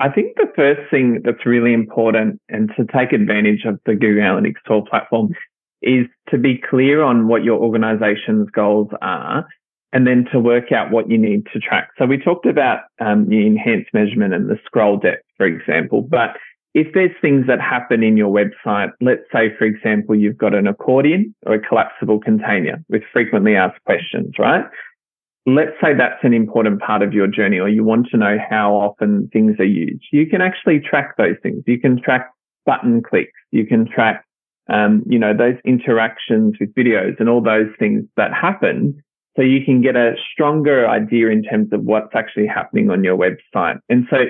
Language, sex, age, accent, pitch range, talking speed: English, male, 20-39, Australian, 110-140 Hz, 190 wpm